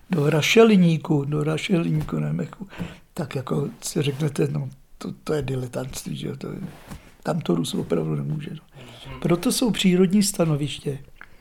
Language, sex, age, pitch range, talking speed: Czech, male, 60-79, 150-185 Hz, 120 wpm